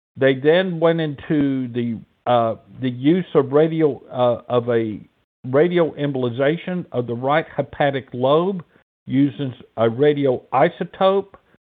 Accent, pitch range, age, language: American, 120-155 Hz, 60-79, English